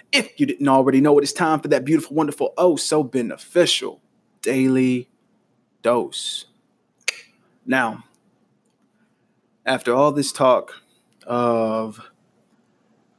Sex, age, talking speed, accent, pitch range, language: male, 20-39, 105 wpm, American, 115-130 Hz, English